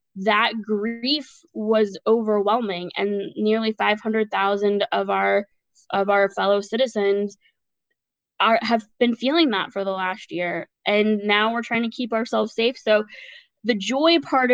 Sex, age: female, 20-39